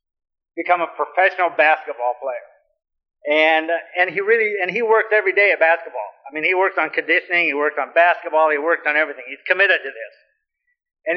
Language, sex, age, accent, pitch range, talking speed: English, male, 50-69, American, 160-225 Hz, 195 wpm